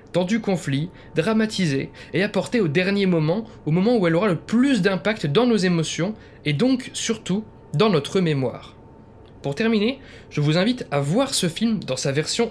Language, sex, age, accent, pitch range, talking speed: French, male, 20-39, French, 140-210 Hz, 180 wpm